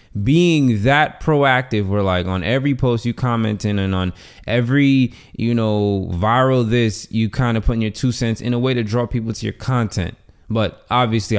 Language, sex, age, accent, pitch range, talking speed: English, male, 20-39, American, 100-125 Hz, 195 wpm